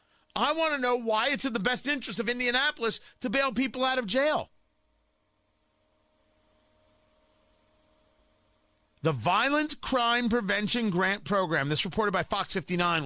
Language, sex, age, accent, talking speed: English, male, 40-59, American, 135 wpm